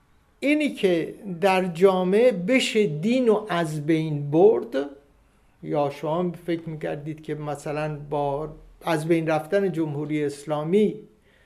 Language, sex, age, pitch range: Persian, male, 60-79, 150-205 Hz